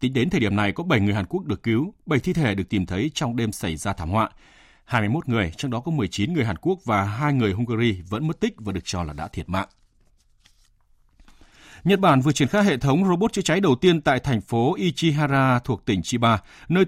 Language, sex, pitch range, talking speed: Vietnamese, male, 100-135 Hz, 240 wpm